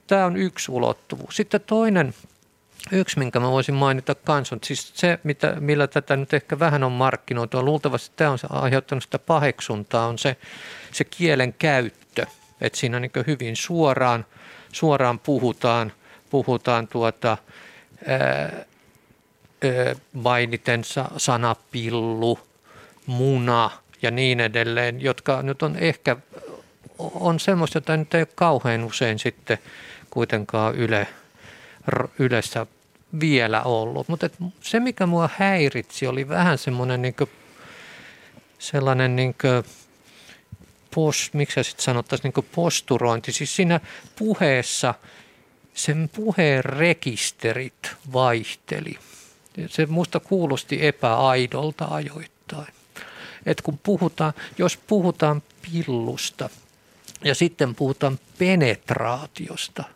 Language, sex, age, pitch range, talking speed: Finnish, male, 50-69, 120-160 Hz, 100 wpm